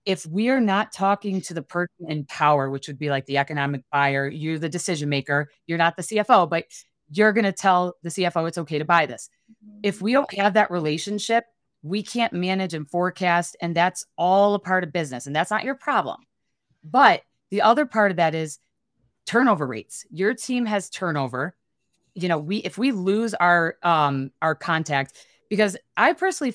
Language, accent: English, American